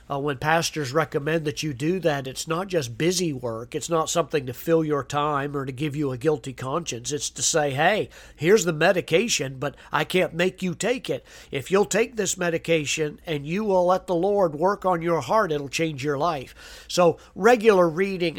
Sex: male